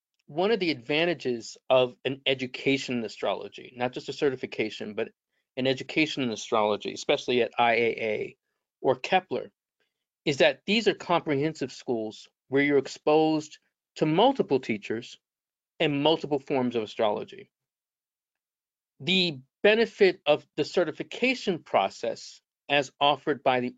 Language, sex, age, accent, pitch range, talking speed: English, male, 40-59, American, 130-165 Hz, 125 wpm